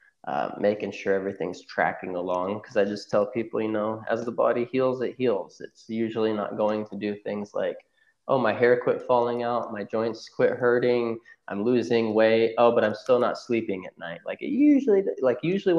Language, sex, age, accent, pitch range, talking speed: English, male, 20-39, American, 105-125 Hz, 200 wpm